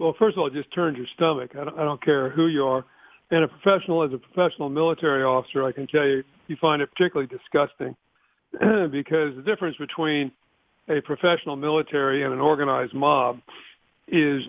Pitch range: 135-155 Hz